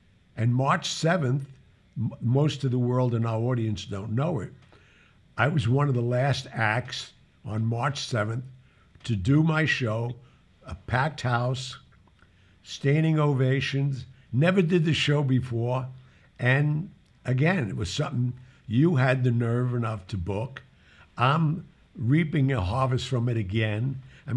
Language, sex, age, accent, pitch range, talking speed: English, male, 60-79, American, 110-140 Hz, 140 wpm